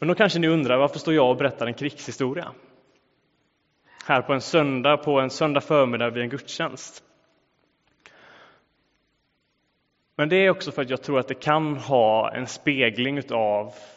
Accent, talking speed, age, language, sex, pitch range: Norwegian, 160 wpm, 20-39, English, male, 125-160 Hz